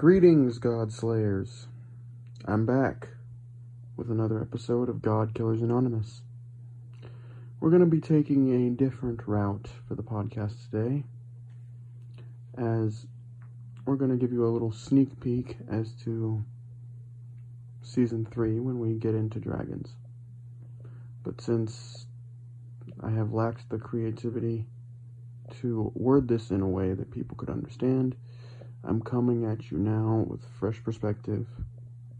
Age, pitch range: 40-59, 115-120 Hz